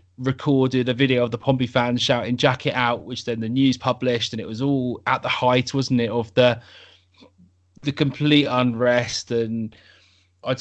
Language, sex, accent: English, male, British